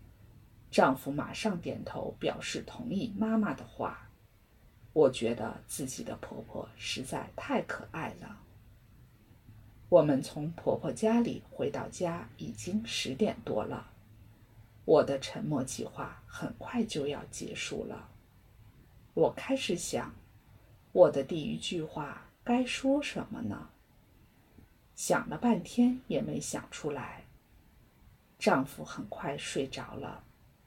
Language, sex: English, female